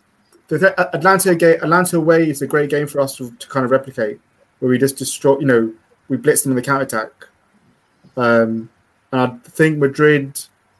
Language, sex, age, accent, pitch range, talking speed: English, male, 20-39, British, 125-150 Hz, 185 wpm